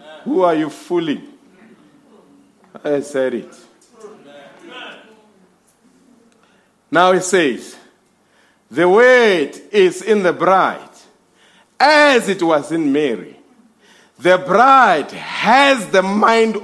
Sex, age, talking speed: male, 50-69, 95 wpm